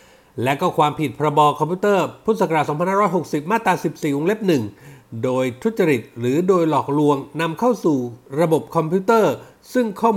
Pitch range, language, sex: 140-190 Hz, Thai, male